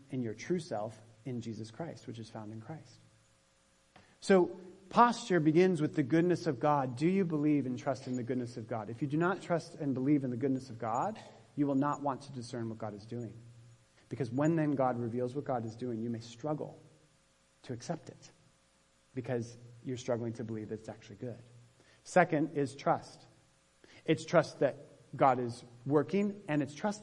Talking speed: 195 wpm